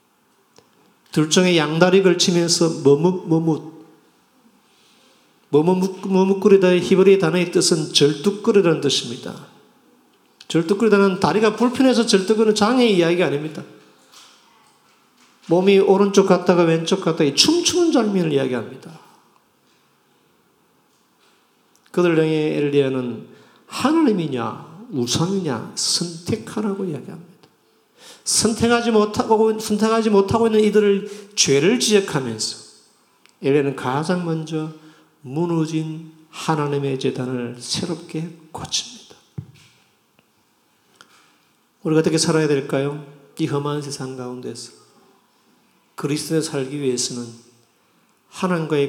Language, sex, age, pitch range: Korean, male, 40-59, 145-195 Hz